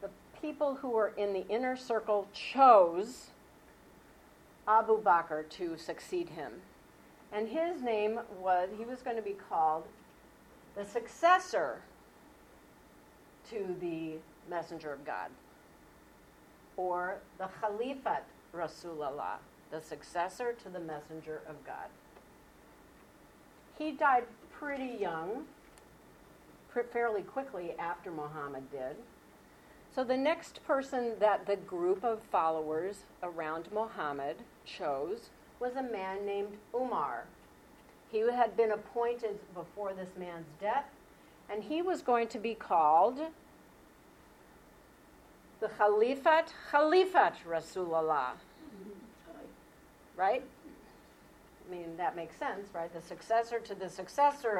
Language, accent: English, American